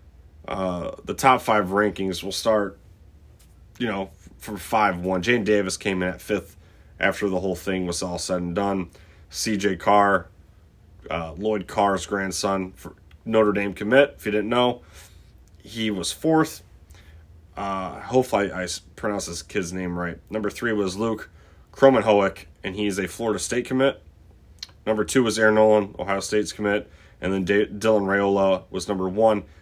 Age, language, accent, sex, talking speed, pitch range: 30-49, English, American, male, 160 wpm, 85-105 Hz